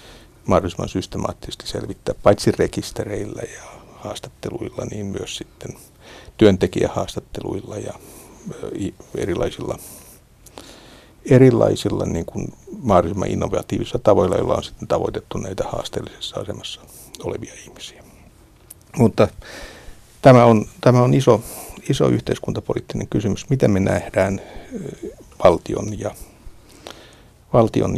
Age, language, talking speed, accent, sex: 60-79, Finnish, 80 wpm, native, male